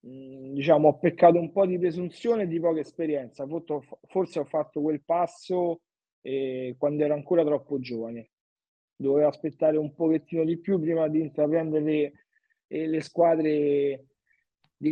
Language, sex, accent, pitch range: Italian, male, native, 145-185 Hz